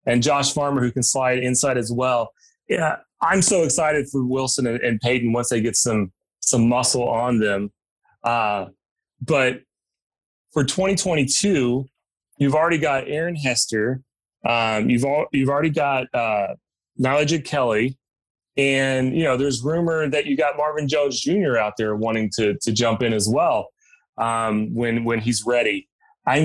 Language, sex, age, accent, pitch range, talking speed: English, male, 30-49, American, 120-145 Hz, 160 wpm